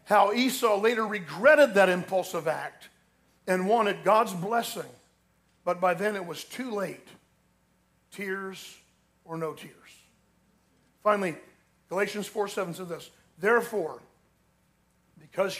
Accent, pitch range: American, 180-225 Hz